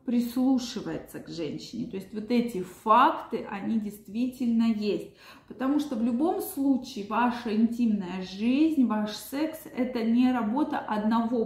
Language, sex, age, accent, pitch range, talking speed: Russian, female, 20-39, native, 225-275 Hz, 130 wpm